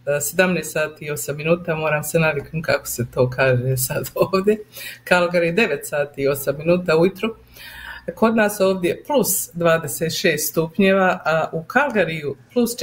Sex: female